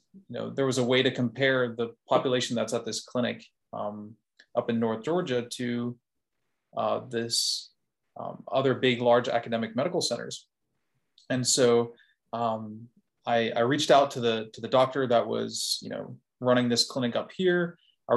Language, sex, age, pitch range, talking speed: English, male, 20-39, 115-130 Hz, 170 wpm